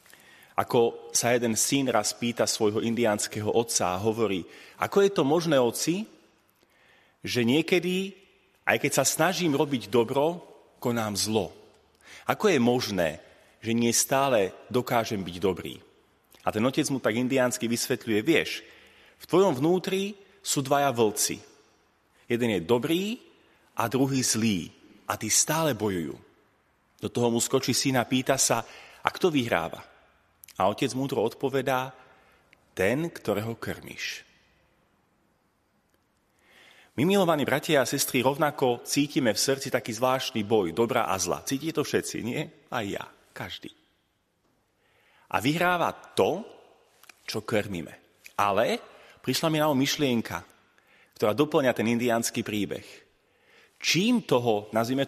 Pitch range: 110-145 Hz